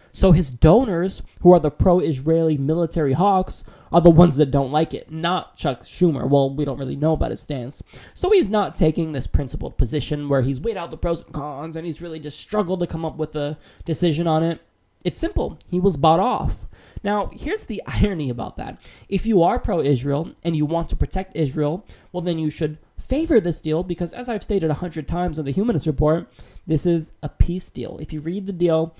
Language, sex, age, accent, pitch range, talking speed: English, male, 20-39, American, 150-190 Hz, 215 wpm